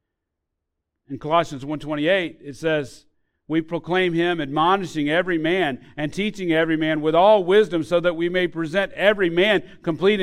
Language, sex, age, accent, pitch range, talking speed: English, male, 40-59, American, 105-170 Hz, 165 wpm